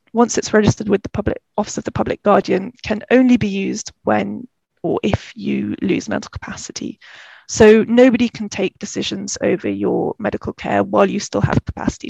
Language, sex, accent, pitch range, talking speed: English, female, British, 205-235 Hz, 180 wpm